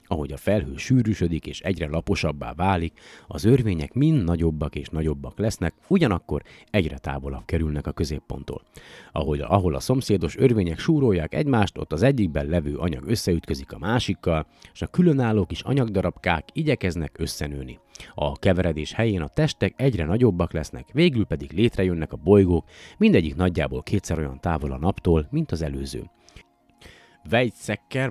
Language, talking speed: Hungarian, 140 wpm